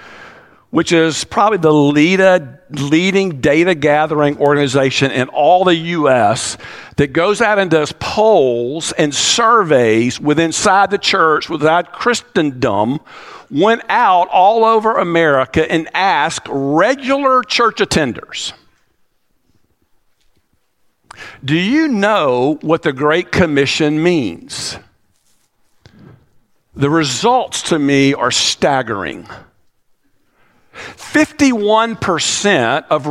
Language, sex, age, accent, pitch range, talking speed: English, male, 50-69, American, 145-215 Hz, 95 wpm